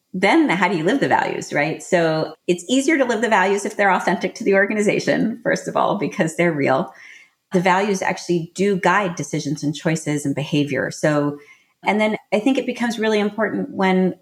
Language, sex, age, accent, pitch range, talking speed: English, female, 30-49, American, 160-200 Hz, 200 wpm